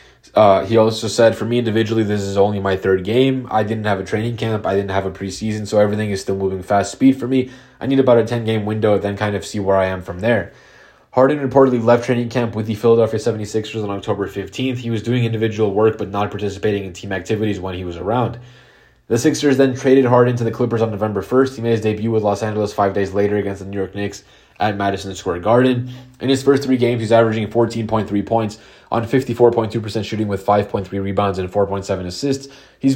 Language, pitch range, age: English, 100-120 Hz, 20-39